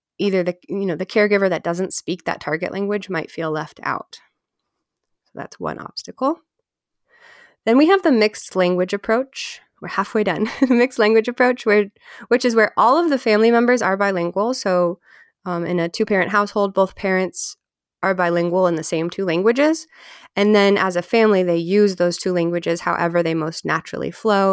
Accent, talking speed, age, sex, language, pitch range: American, 185 wpm, 20-39, female, English, 175-220 Hz